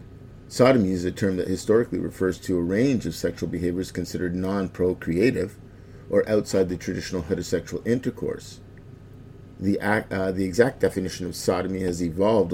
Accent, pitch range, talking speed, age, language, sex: American, 90-115 Hz, 145 wpm, 50-69, English, male